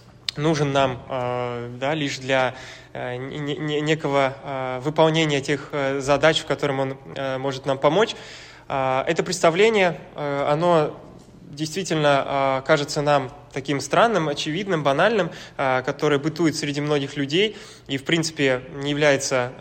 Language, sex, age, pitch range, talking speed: Russian, male, 20-39, 135-165 Hz, 105 wpm